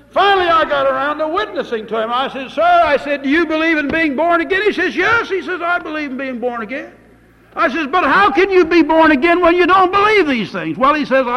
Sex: male